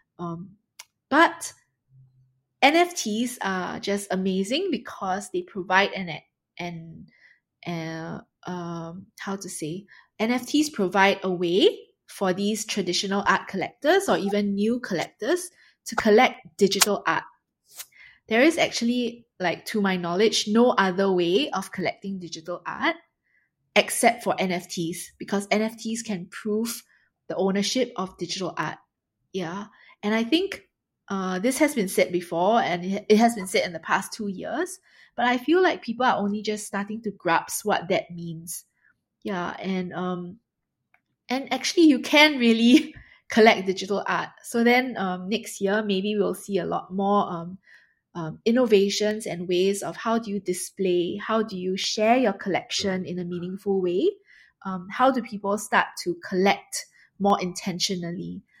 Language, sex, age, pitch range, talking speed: Vietnamese, female, 20-39, 180-230 Hz, 150 wpm